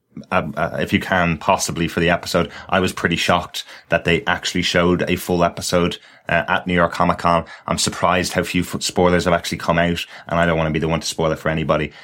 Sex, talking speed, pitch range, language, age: male, 230 wpm, 80-95 Hz, English, 20-39